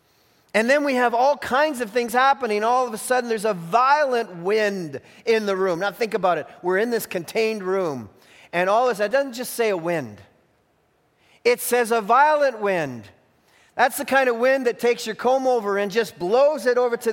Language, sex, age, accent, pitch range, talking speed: English, male, 40-59, American, 195-260 Hz, 205 wpm